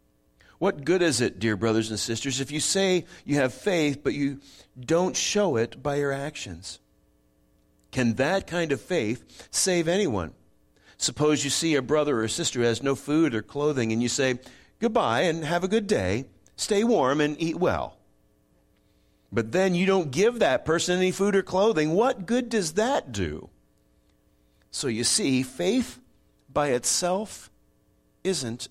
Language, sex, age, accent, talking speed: English, male, 50-69, American, 165 wpm